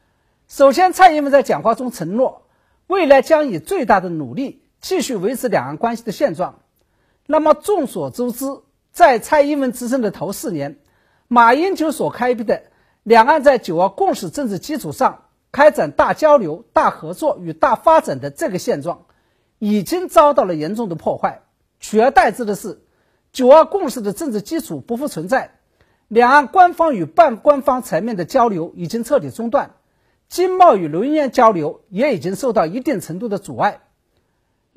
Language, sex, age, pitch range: Chinese, male, 50-69, 215-310 Hz